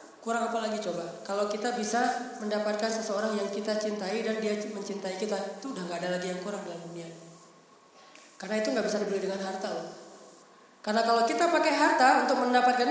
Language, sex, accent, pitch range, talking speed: Indonesian, female, native, 205-270 Hz, 185 wpm